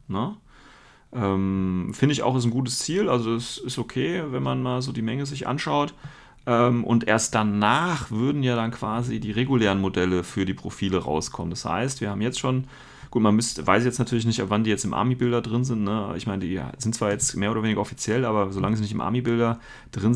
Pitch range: 100-125 Hz